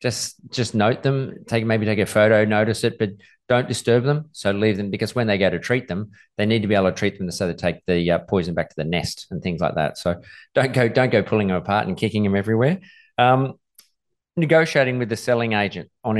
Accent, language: Australian, English